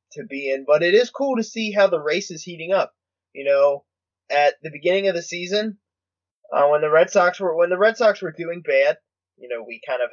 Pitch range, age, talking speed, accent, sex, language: 120-180 Hz, 20-39, 245 wpm, American, male, English